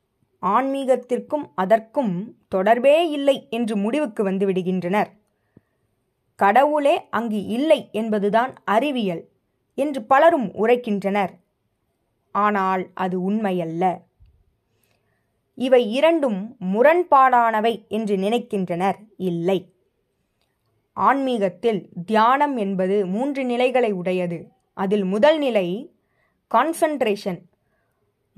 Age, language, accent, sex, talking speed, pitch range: 20-39, Tamil, native, female, 70 wpm, 190-270 Hz